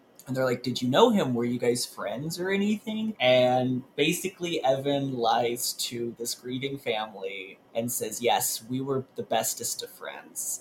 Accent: American